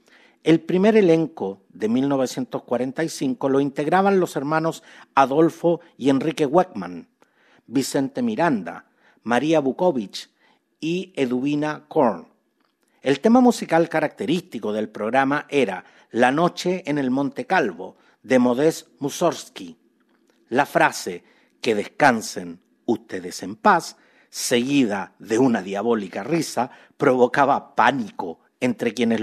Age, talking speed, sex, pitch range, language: 50-69, 105 wpm, male, 125-170 Hz, Spanish